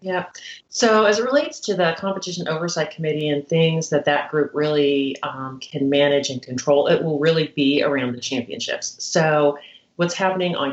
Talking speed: 180 wpm